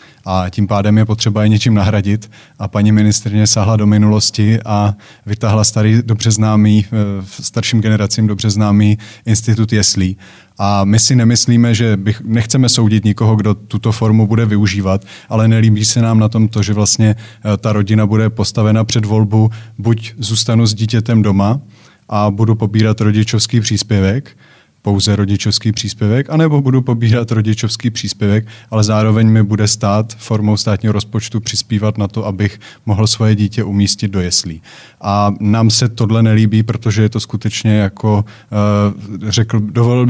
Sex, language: male, Czech